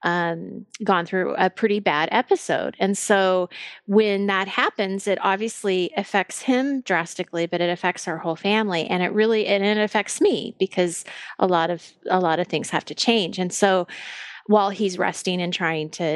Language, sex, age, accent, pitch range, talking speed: English, female, 30-49, American, 180-210 Hz, 180 wpm